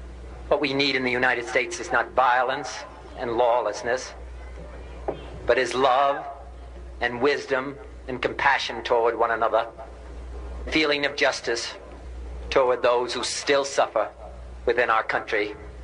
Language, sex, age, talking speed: English, male, 50-69, 125 wpm